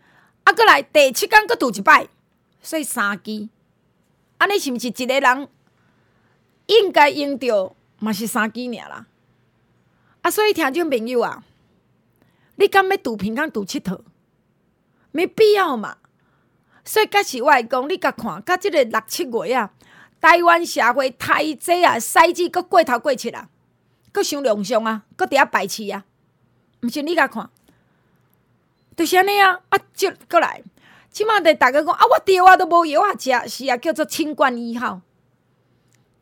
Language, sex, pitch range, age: Chinese, female, 240-350 Hz, 30-49